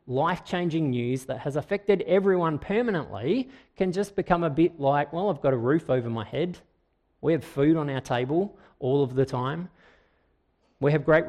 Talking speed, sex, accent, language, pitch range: 180 wpm, male, Australian, English, 115-155 Hz